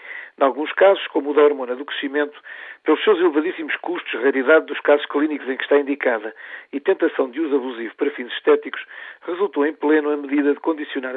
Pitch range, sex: 135-205 Hz, male